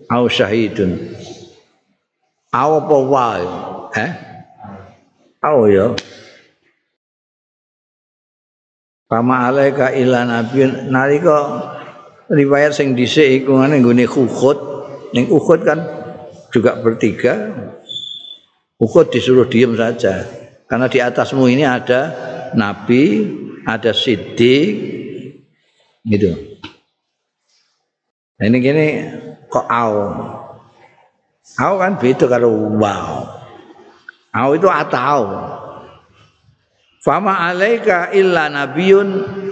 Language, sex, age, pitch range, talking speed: Indonesian, male, 50-69, 115-145 Hz, 75 wpm